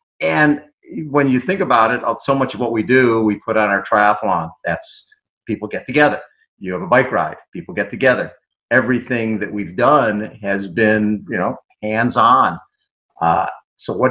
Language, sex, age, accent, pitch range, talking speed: English, male, 50-69, American, 105-125 Hz, 180 wpm